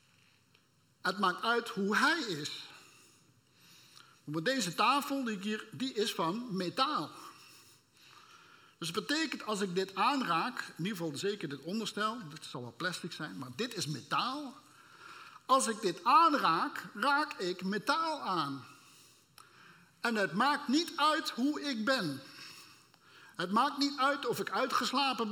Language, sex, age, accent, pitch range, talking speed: Dutch, male, 50-69, Dutch, 190-280 Hz, 145 wpm